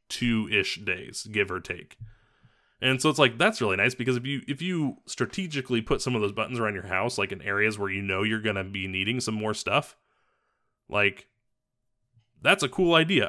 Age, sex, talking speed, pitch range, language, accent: 20-39, male, 205 wpm, 105-140 Hz, English, American